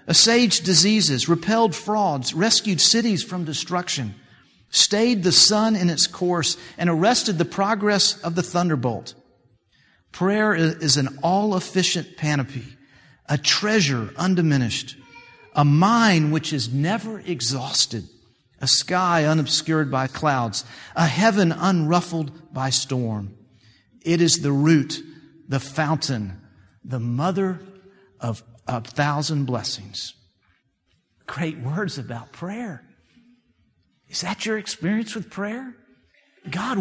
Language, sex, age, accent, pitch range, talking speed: English, male, 50-69, American, 130-180 Hz, 110 wpm